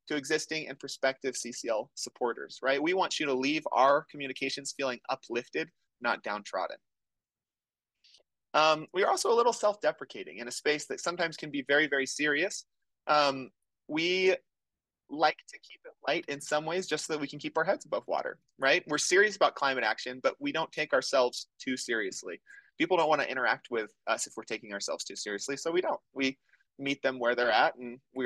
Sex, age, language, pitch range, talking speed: male, 30-49, English, 125-155 Hz, 195 wpm